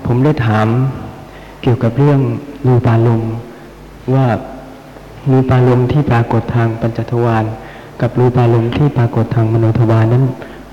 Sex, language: male, Thai